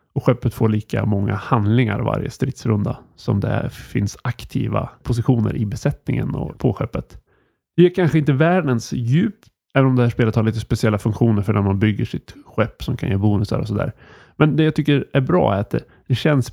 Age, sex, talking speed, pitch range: 30-49, male, 200 wpm, 110-140 Hz